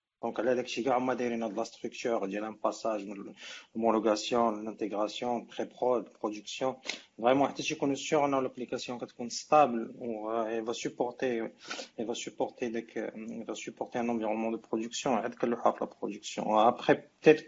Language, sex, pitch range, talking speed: Arabic, male, 110-125 Hz, 145 wpm